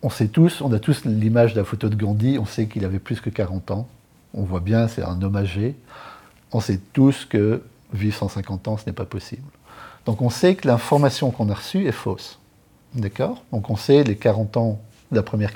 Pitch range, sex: 110-135 Hz, male